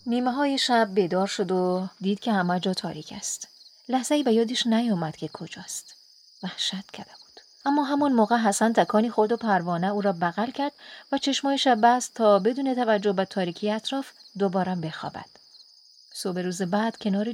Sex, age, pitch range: female, 30-49, 190-240 Hz